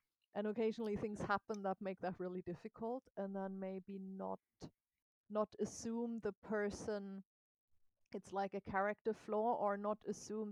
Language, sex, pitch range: English, female, 195-230 Hz